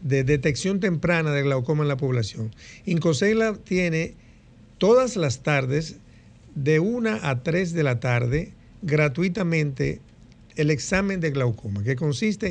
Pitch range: 130-165 Hz